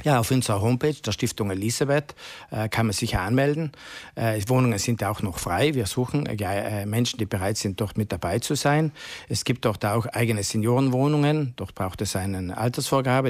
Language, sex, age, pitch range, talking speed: German, male, 50-69, 110-130 Hz, 195 wpm